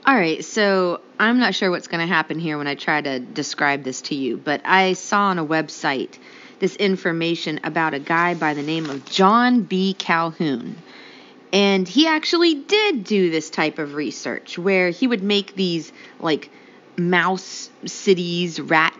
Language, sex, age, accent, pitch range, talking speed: English, female, 30-49, American, 160-220 Hz, 175 wpm